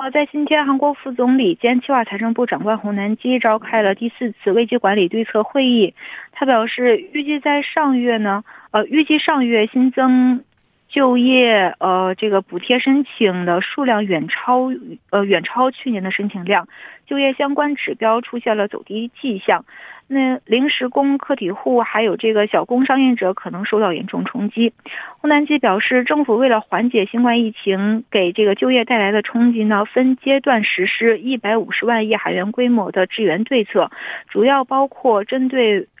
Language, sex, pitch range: Korean, female, 210-255 Hz